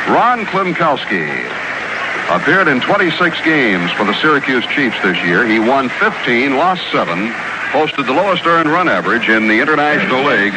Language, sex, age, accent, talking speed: English, male, 60-79, American, 155 wpm